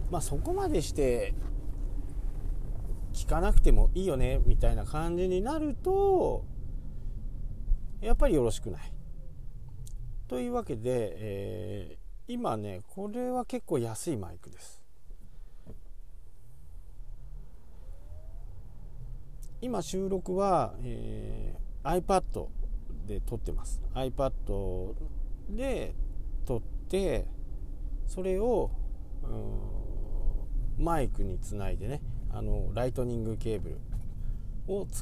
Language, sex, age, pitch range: Japanese, male, 50-69, 95-145 Hz